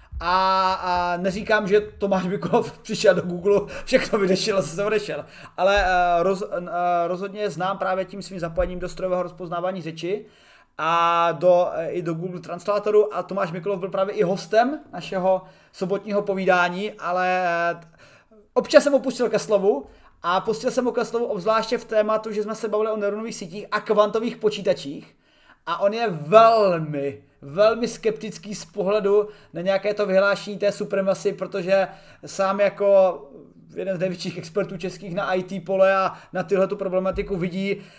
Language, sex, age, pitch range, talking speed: Czech, male, 30-49, 185-220 Hz, 155 wpm